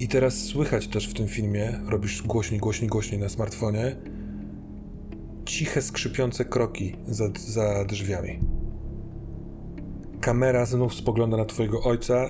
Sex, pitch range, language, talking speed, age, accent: male, 105-120 Hz, Polish, 120 wpm, 30-49, native